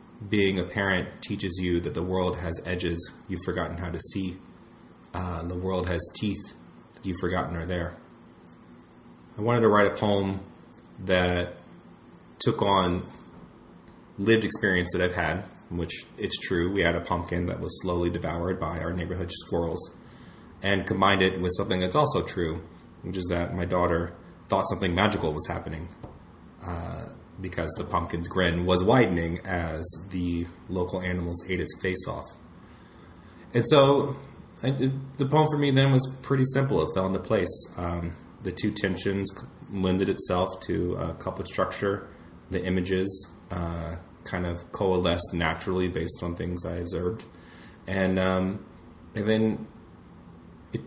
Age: 30-49